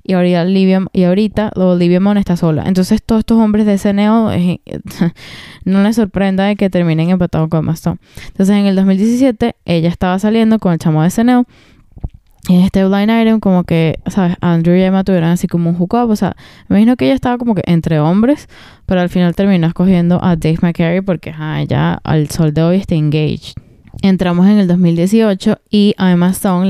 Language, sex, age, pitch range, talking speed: English, female, 10-29, 175-200 Hz, 195 wpm